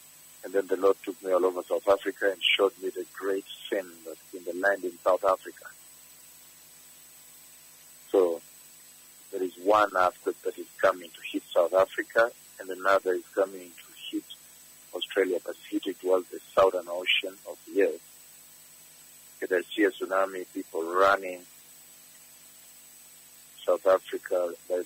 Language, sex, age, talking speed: English, male, 50-69, 140 wpm